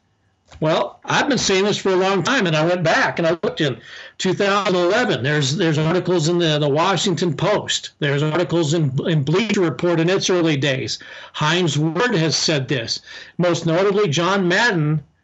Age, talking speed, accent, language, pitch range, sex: 50-69, 175 wpm, American, English, 145-180 Hz, male